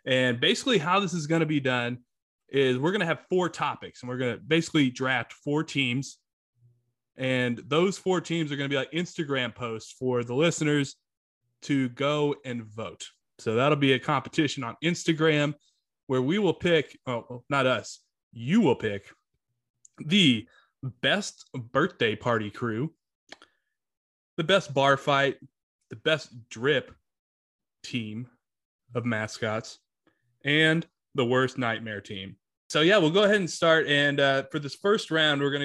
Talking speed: 155 wpm